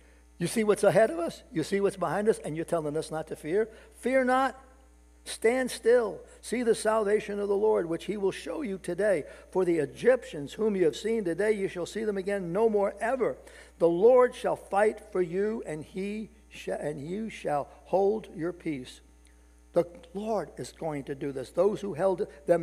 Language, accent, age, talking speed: English, American, 60-79, 195 wpm